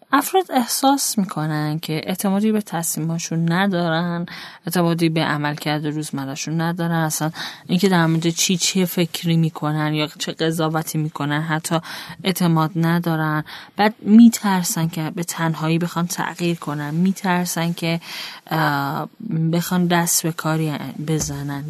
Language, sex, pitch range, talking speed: Persian, female, 160-195 Hz, 120 wpm